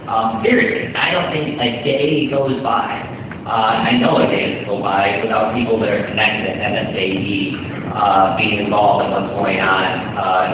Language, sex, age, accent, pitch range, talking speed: English, male, 50-69, American, 100-120 Hz, 190 wpm